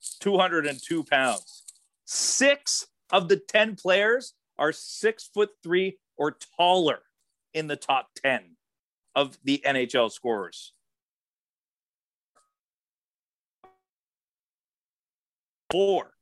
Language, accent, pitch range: English, American, 120-185 Hz